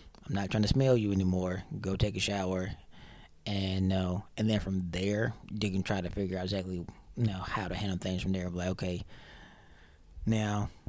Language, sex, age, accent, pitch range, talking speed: English, male, 20-39, American, 95-105 Hz, 205 wpm